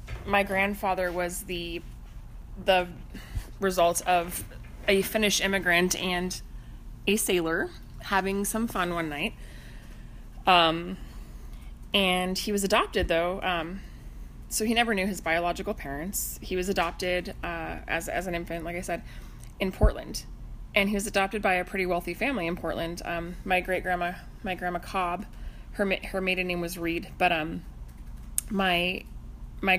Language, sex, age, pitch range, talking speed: English, female, 30-49, 170-190 Hz, 145 wpm